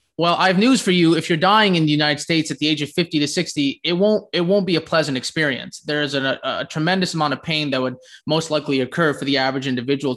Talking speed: 265 wpm